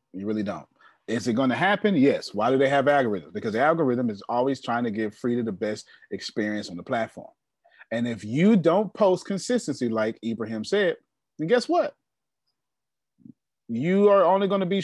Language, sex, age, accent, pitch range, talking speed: English, male, 30-49, American, 110-155 Hz, 190 wpm